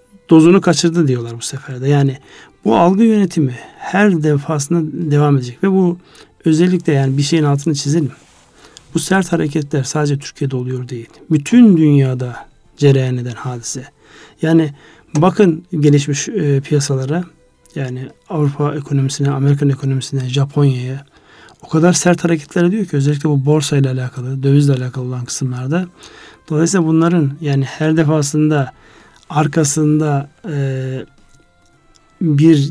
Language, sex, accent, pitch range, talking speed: Turkish, male, native, 140-170 Hz, 120 wpm